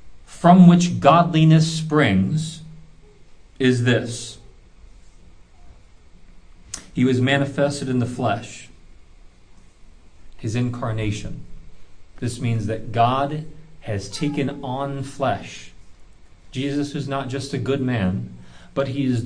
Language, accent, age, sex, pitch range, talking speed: English, American, 40-59, male, 95-140 Hz, 100 wpm